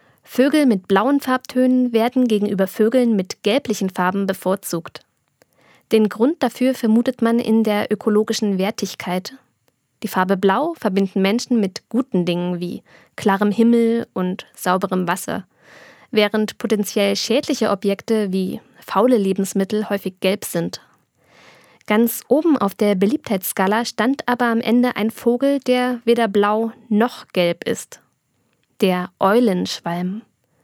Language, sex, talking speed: German, female, 125 wpm